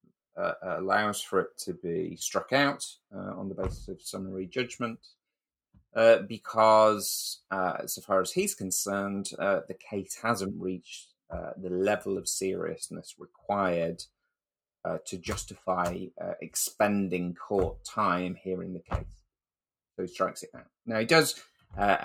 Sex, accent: male, British